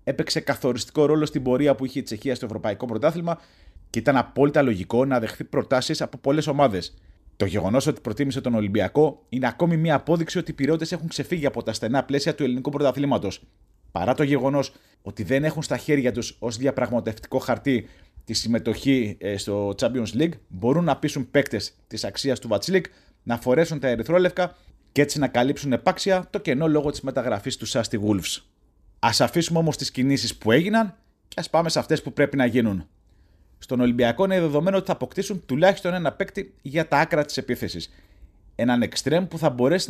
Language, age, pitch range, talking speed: Greek, 30-49, 120-160 Hz, 185 wpm